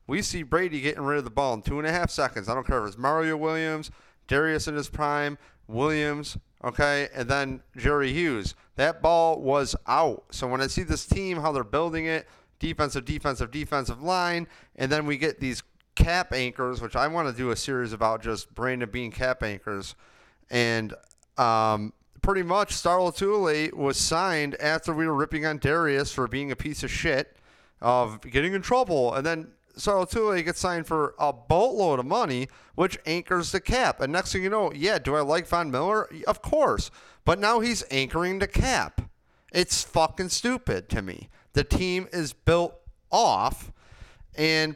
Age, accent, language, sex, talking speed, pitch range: 30-49, American, English, male, 185 wpm, 130-170 Hz